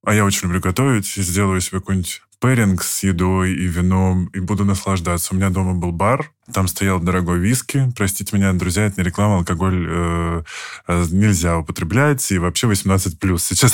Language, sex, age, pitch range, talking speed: Russian, male, 20-39, 95-115 Hz, 170 wpm